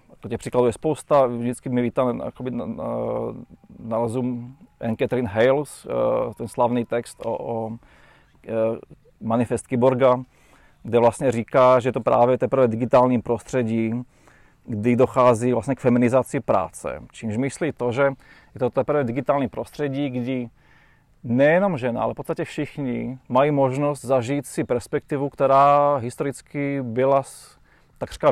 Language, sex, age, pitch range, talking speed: Czech, male, 30-49, 120-140 Hz, 125 wpm